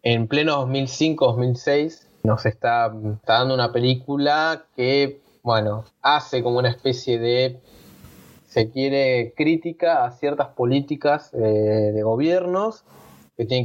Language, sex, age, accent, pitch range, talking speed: Spanish, male, 20-39, Argentinian, 115-140 Hz, 120 wpm